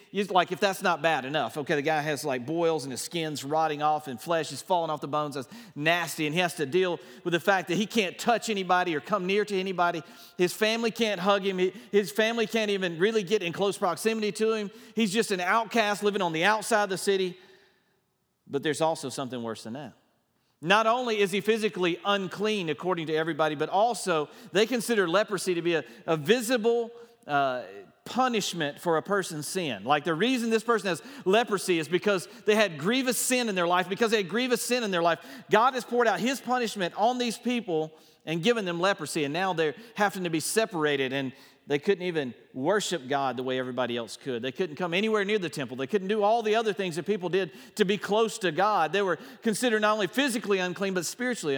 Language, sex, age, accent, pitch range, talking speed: English, male, 40-59, American, 155-215 Hz, 220 wpm